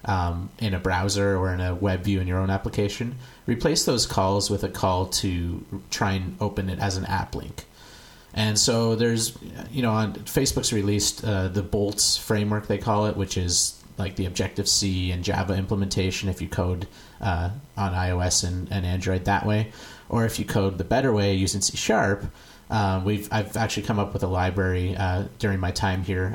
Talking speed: 195 wpm